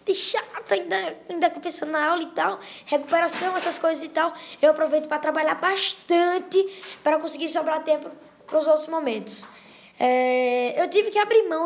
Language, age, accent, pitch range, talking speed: Portuguese, 10-29, Brazilian, 270-325 Hz, 165 wpm